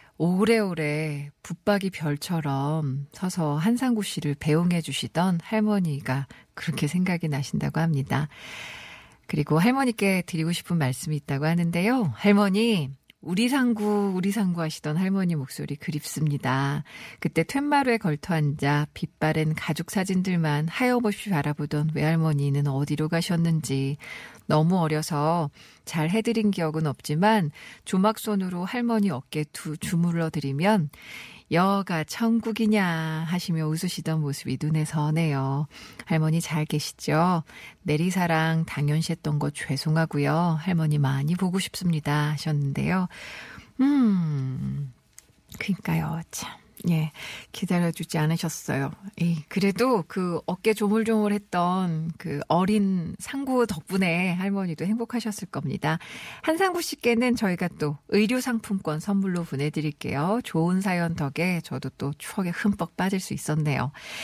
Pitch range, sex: 150-200 Hz, female